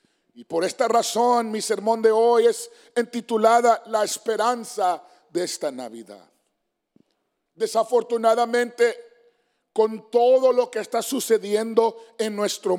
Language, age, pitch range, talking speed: English, 40-59, 215-250 Hz, 115 wpm